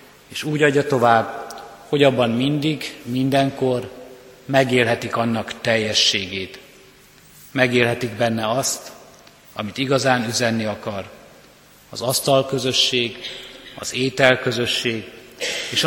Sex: male